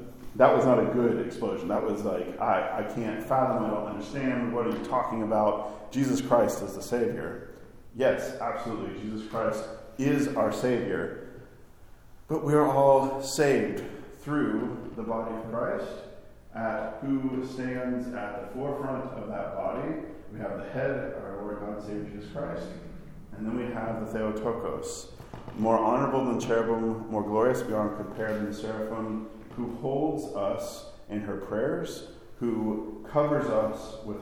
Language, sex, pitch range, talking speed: English, male, 105-125 Hz, 160 wpm